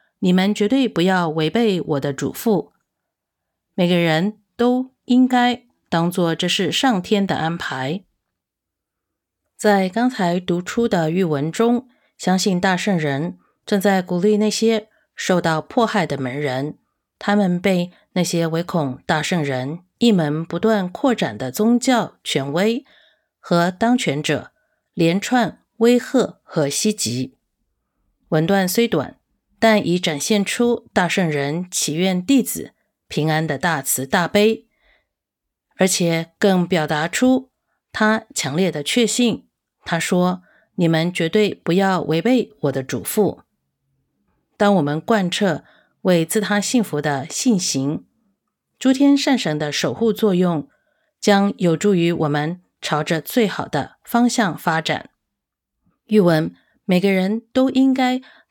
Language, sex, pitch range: English, female, 160-220 Hz